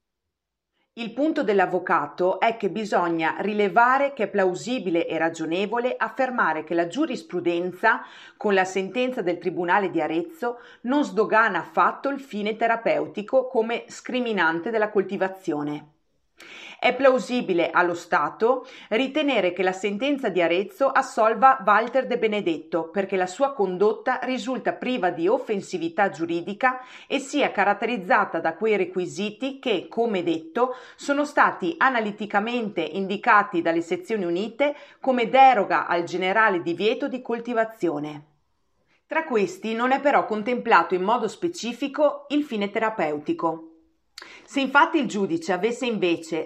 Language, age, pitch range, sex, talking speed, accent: Italian, 40-59, 175-250 Hz, female, 125 wpm, native